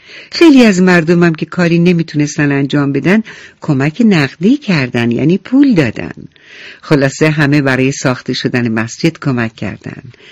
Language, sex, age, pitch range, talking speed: English, female, 60-79, 140-185 Hz, 135 wpm